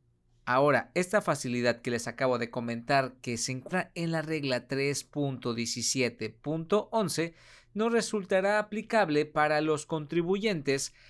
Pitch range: 130-185 Hz